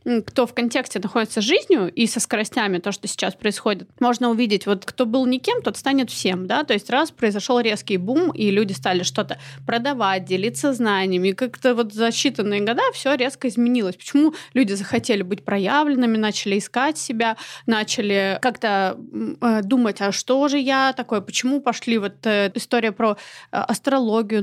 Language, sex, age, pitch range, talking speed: Russian, female, 20-39, 205-255 Hz, 160 wpm